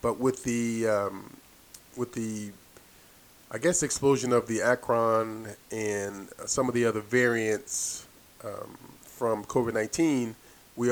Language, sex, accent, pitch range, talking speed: English, male, American, 105-130 Hz, 120 wpm